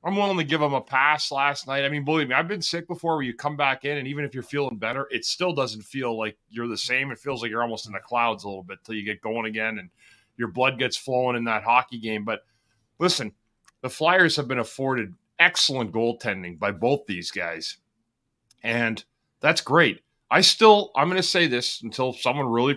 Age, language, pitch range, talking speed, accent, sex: 30-49, English, 115-150 Hz, 230 wpm, American, male